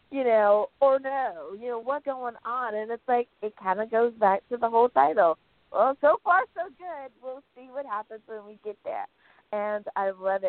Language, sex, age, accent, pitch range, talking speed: English, female, 20-39, American, 185-245 Hz, 210 wpm